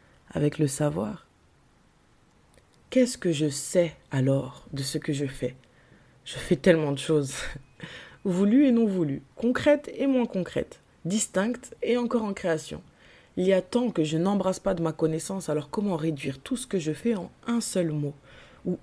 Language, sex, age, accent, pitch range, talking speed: French, female, 20-39, French, 150-195 Hz, 175 wpm